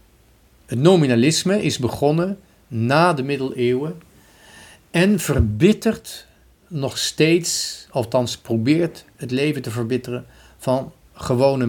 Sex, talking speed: male, 100 wpm